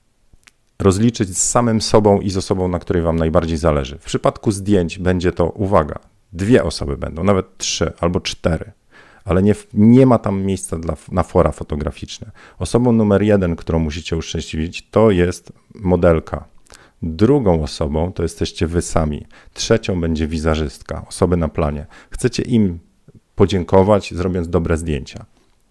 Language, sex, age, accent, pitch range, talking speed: Polish, male, 40-59, native, 80-105 Hz, 140 wpm